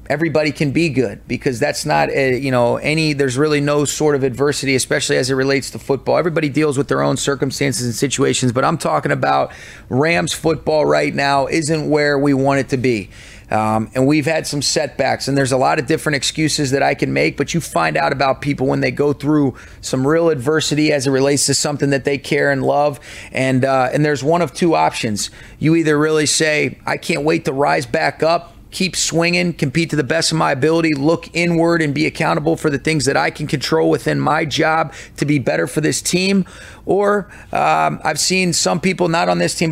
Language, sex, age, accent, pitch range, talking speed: English, male, 30-49, American, 135-160 Hz, 220 wpm